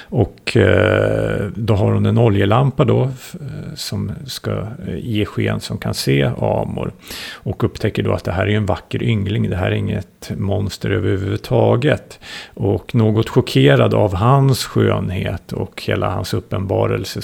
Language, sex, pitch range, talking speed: Swedish, male, 100-120 Hz, 145 wpm